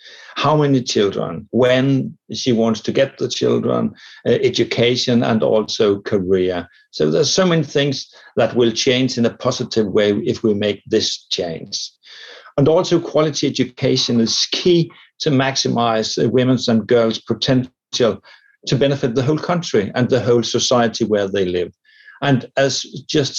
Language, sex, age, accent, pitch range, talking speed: English, male, 60-79, Danish, 110-130 Hz, 150 wpm